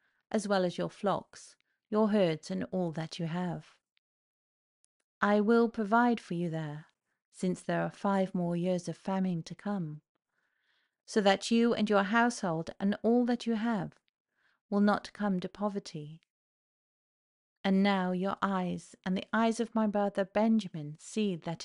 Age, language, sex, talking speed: 40-59, English, female, 160 wpm